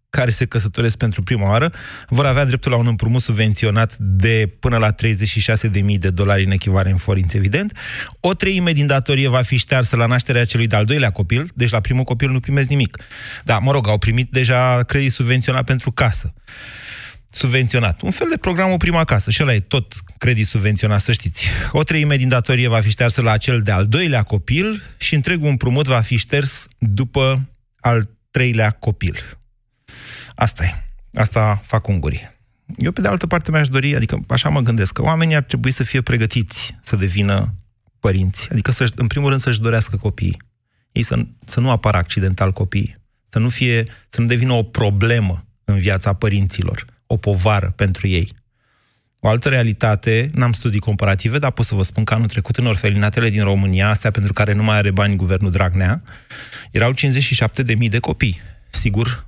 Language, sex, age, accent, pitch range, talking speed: Romanian, male, 30-49, native, 105-130 Hz, 175 wpm